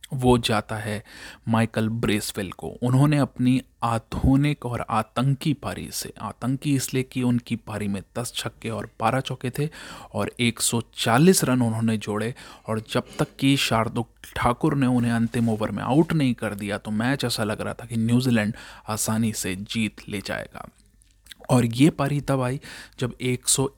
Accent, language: native, Hindi